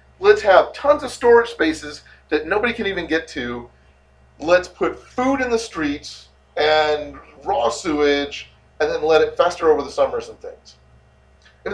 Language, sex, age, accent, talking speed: English, male, 40-59, American, 165 wpm